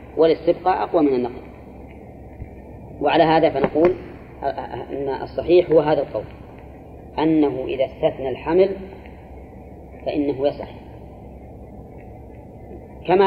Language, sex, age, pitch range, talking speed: Arabic, female, 30-49, 120-160 Hz, 85 wpm